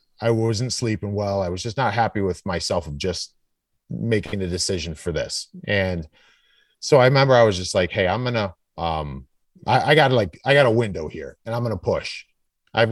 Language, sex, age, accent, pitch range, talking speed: English, male, 30-49, American, 90-115 Hz, 215 wpm